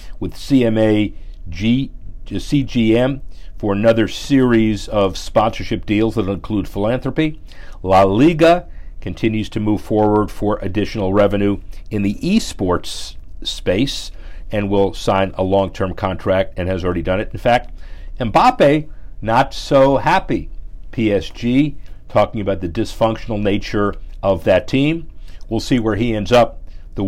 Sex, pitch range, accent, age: male, 90-115 Hz, American, 50-69